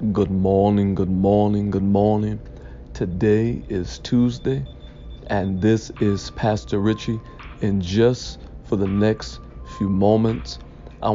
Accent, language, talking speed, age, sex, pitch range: American, English, 120 wpm, 40-59, male, 75-120 Hz